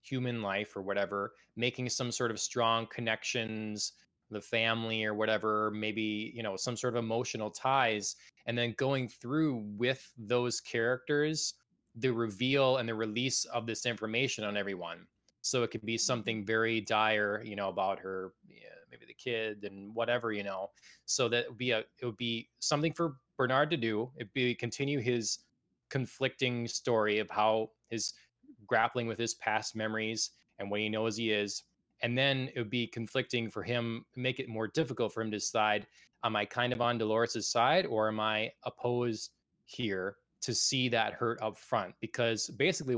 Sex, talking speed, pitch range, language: male, 175 wpm, 110-125 Hz, English